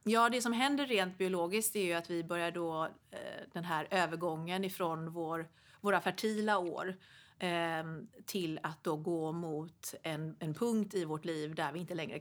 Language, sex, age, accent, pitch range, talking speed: Swedish, female, 40-59, native, 165-210 Hz, 170 wpm